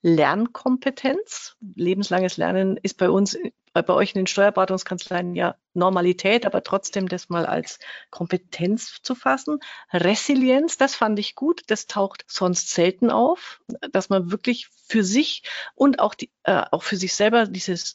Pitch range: 180-230 Hz